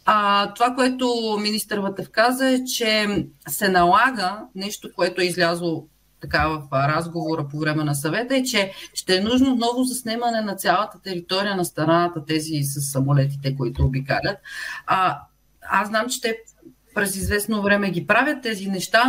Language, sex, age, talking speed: Bulgarian, female, 30-49, 155 wpm